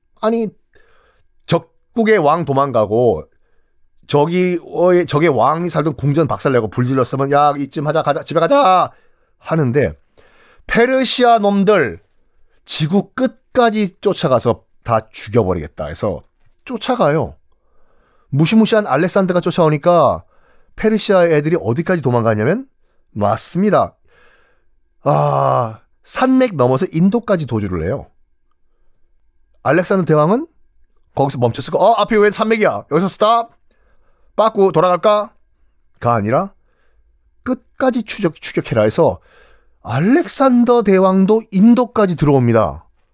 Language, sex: Korean, male